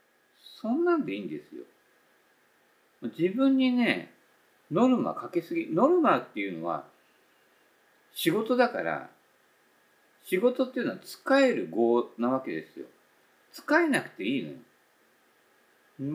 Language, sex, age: Japanese, male, 50-69